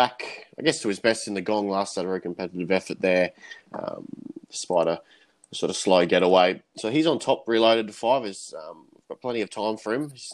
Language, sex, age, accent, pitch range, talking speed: English, male, 20-39, Australian, 95-110 Hz, 225 wpm